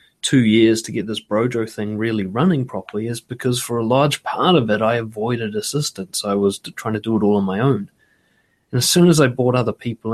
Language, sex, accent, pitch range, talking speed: English, male, Australian, 105-130 Hz, 230 wpm